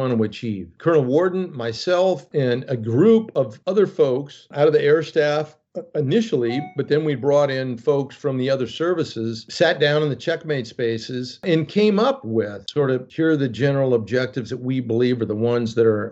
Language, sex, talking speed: English, male, 195 wpm